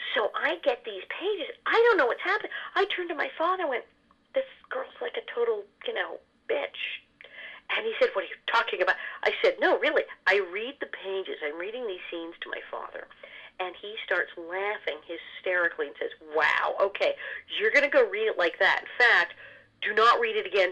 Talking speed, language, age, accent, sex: 210 wpm, English, 40-59, American, female